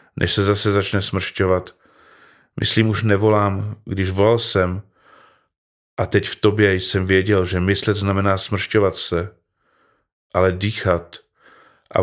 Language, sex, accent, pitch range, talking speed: Czech, male, native, 95-105 Hz, 125 wpm